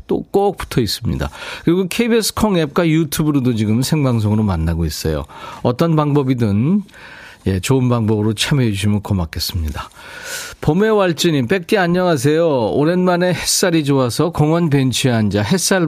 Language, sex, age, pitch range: Korean, male, 40-59, 125-175 Hz